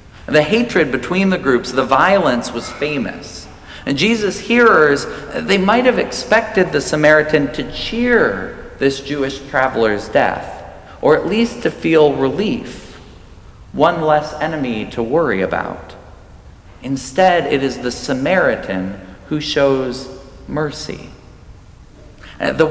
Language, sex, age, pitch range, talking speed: English, male, 40-59, 125-155 Hz, 120 wpm